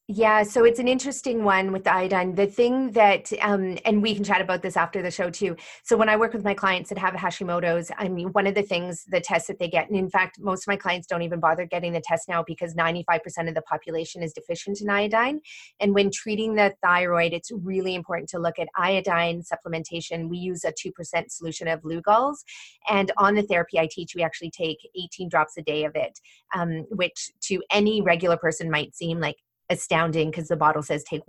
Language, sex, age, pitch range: English, female, 30-49, 165-195 Hz